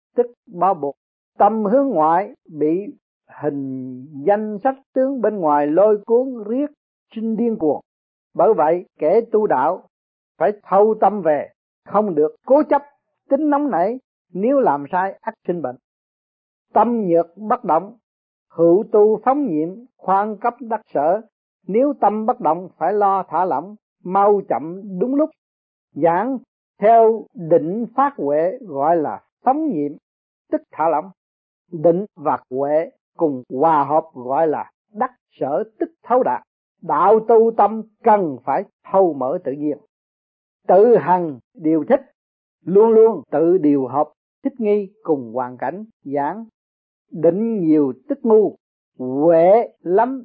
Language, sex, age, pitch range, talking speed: Vietnamese, male, 50-69, 155-235 Hz, 145 wpm